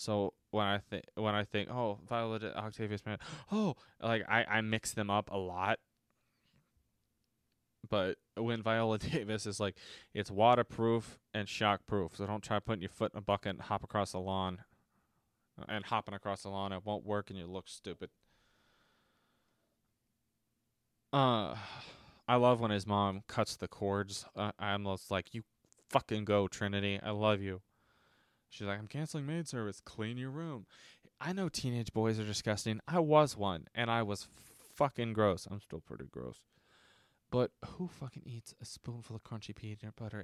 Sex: male